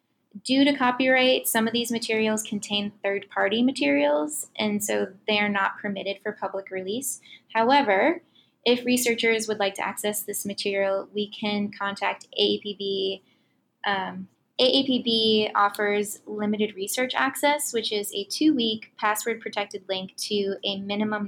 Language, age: English, 20-39